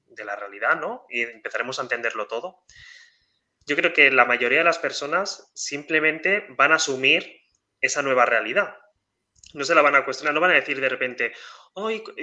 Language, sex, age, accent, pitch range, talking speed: Spanish, male, 20-39, Spanish, 135-195 Hz, 180 wpm